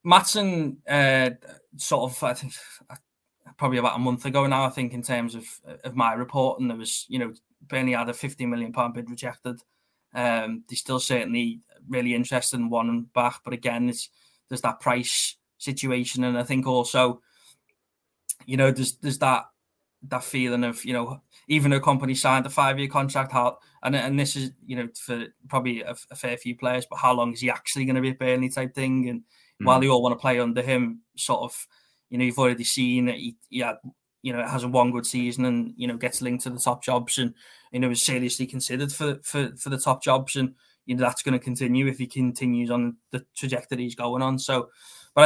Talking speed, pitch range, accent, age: 215 wpm, 120-135 Hz, British, 20-39